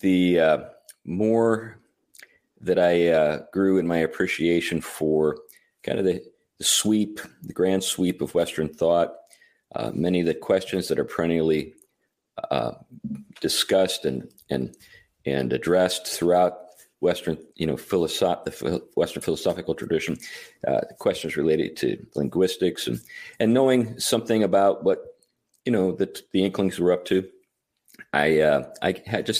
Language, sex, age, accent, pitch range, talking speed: English, male, 40-59, American, 80-110 Hz, 140 wpm